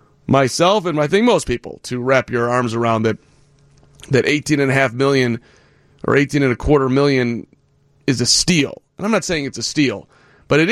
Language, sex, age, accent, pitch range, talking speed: English, male, 30-49, American, 130-165 Hz, 205 wpm